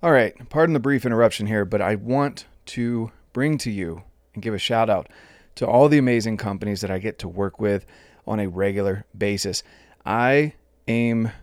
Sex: male